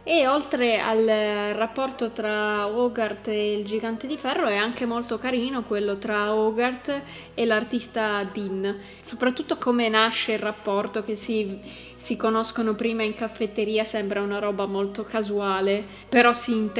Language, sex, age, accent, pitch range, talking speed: Italian, female, 20-39, native, 200-225 Hz, 140 wpm